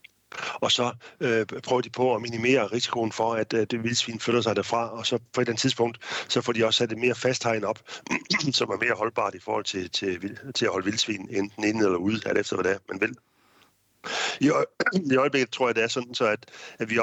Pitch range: 100-115 Hz